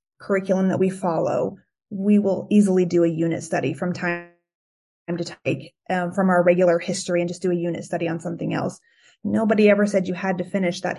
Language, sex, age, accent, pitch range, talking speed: English, female, 20-39, American, 185-220 Hz, 200 wpm